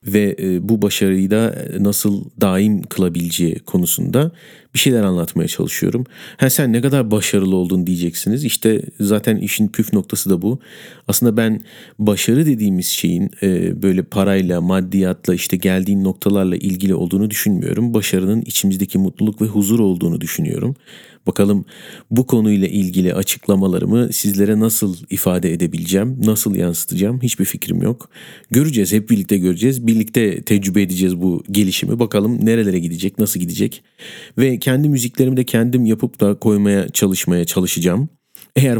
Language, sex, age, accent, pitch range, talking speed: Turkish, male, 40-59, native, 95-110 Hz, 135 wpm